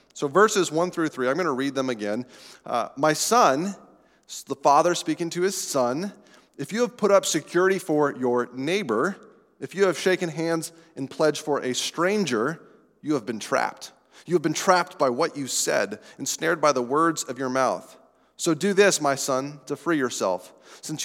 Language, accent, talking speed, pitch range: English, American, 190 wpm, 135-185 Hz